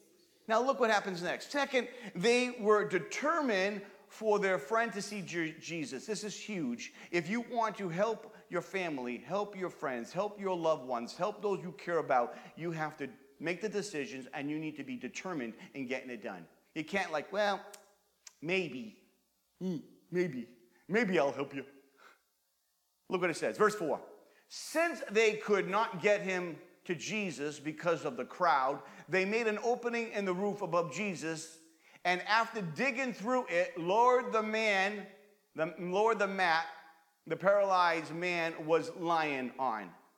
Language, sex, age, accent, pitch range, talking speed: English, male, 40-59, American, 165-215 Hz, 165 wpm